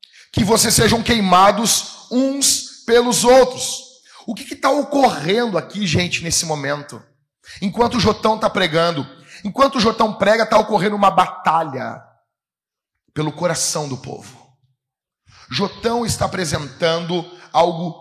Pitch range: 165-235 Hz